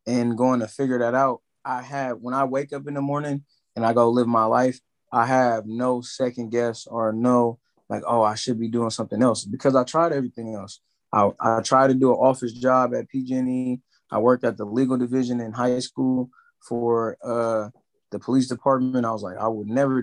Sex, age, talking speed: male, 20-39, 215 wpm